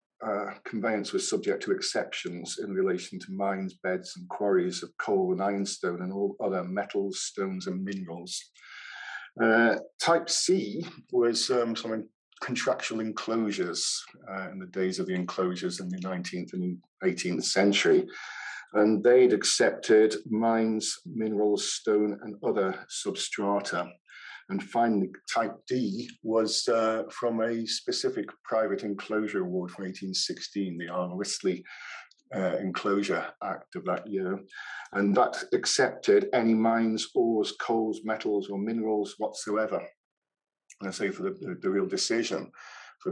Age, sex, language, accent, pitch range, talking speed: 50-69, male, English, British, 95-125 Hz, 135 wpm